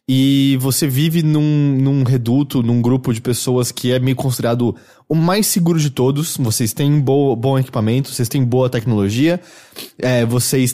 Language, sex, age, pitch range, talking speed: English, male, 20-39, 120-160 Hz, 170 wpm